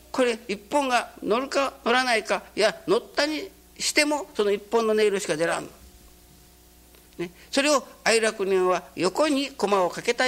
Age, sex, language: 60-79, male, Japanese